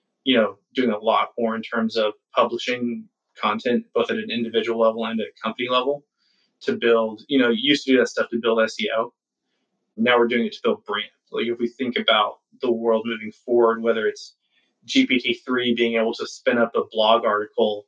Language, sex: English, male